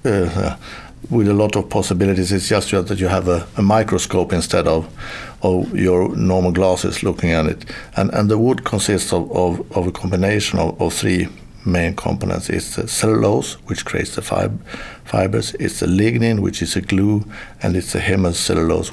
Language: English